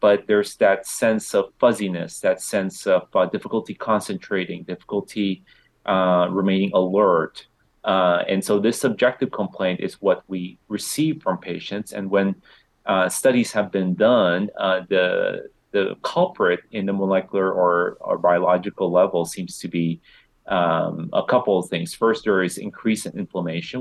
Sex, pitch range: male, 85-100 Hz